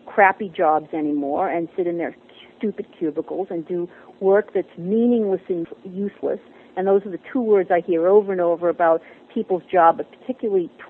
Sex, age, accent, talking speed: female, 50-69, American, 170 wpm